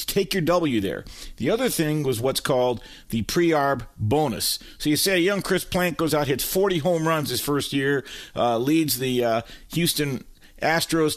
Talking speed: 190 wpm